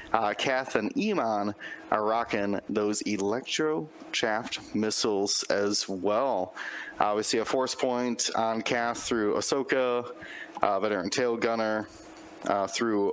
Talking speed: 130 wpm